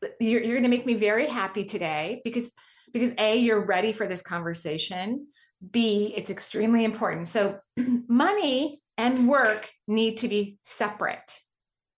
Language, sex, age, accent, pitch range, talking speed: English, female, 30-49, American, 180-245 Hz, 140 wpm